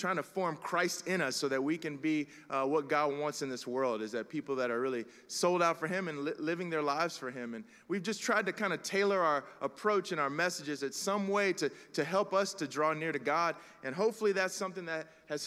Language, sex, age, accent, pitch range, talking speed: English, male, 30-49, American, 160-220 Hz, 255 wpm